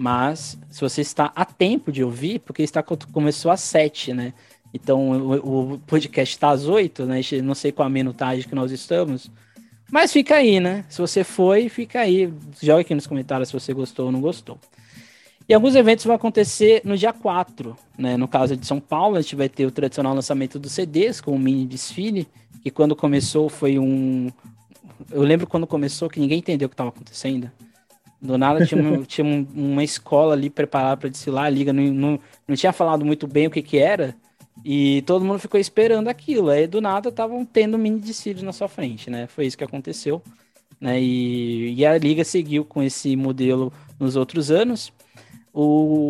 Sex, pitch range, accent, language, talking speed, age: male, 135-175 Hz, Brazilian, Portuguese, 195 wpm, 20-39